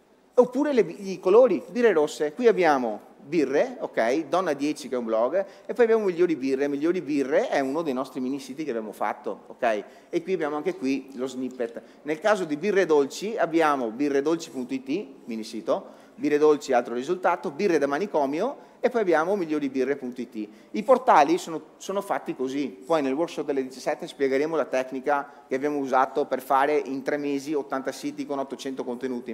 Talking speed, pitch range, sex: 180 wpm, 135-185 Hz, male